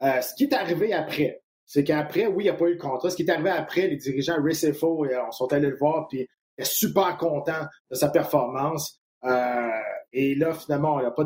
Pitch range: 130-165 Hz